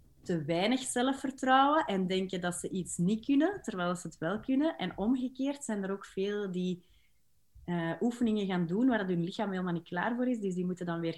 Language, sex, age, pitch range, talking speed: Dutch, female, 30-49, 175-220 Hz, 215 wpm